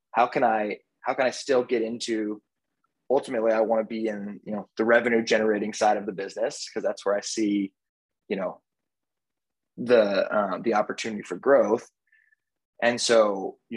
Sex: male